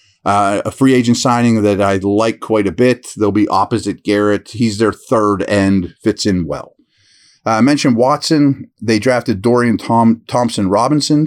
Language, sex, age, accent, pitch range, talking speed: English, male, 30-49, American, 105-135 Hz, 165 wpm